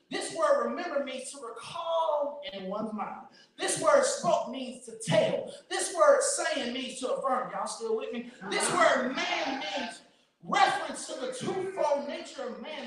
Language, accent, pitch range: English, American, 255-345 Hz